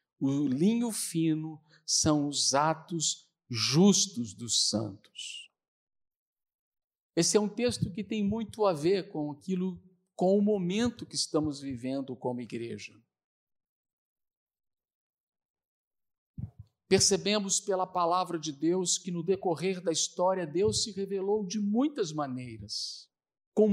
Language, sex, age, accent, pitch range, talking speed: Portuguese, male, 50-69, Brazilian, 150-205 Hz, 115 wpm